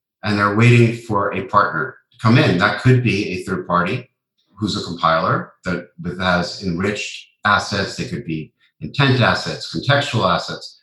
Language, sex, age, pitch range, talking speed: English, male, 50-69, 100-125 Hz, 160 wpm